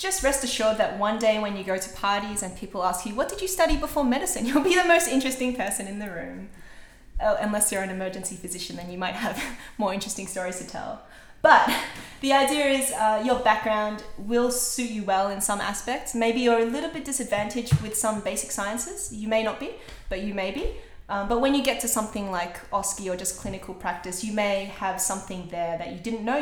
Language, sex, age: English, female, 20-39